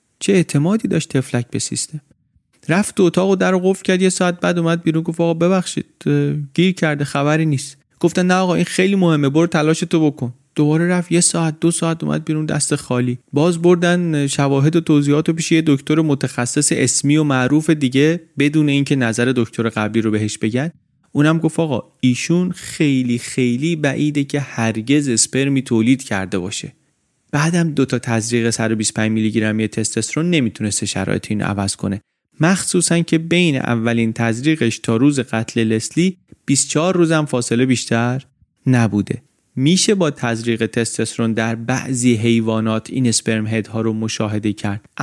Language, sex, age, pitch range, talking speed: Persian, male, 30-49, 115-165 Hz, 160 wpm